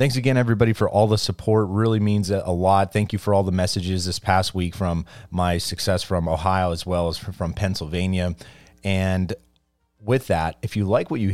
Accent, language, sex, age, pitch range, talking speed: American, English, male, 30-49, 90-110 Hz, 200 wpm